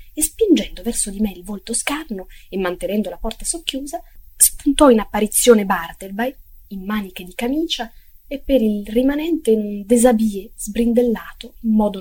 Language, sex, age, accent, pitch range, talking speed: Italian, female, 20-39, native, 200-255 Hz, 150 wpm